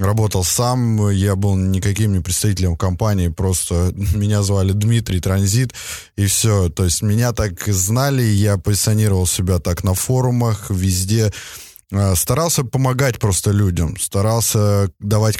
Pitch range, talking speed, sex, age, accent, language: 95-110 Hz, 135 wpm, male, 20-39, native, Russian